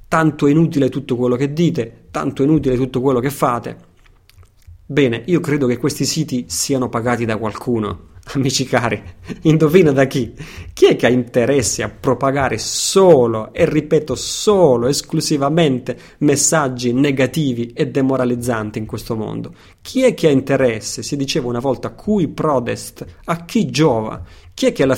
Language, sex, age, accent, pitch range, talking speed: Italian, male, 30-49, native, 115-150 Hz, 160 wpm